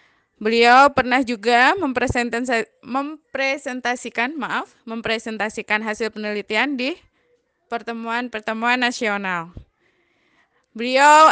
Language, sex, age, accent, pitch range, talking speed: Indonesian, female, 20-39, native, 235-275 Hz, 70 wpm